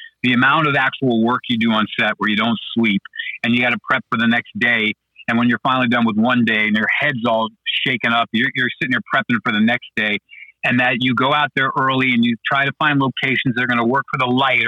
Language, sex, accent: English, male, American